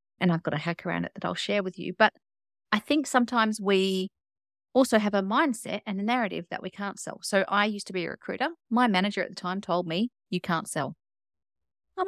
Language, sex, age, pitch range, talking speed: English, female, 30-49, 180-245 Hz, 230 wpm